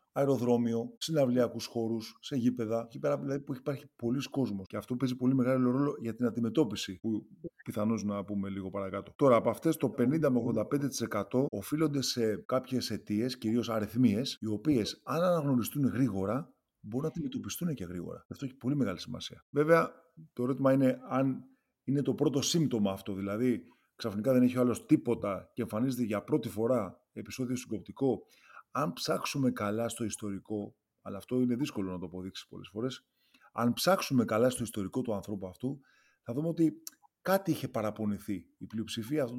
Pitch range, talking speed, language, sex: 110-140 Hz, 170 wpm, Greek, male